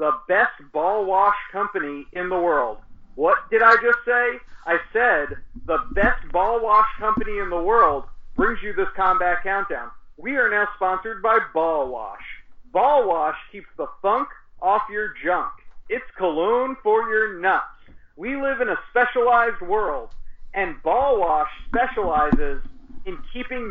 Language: English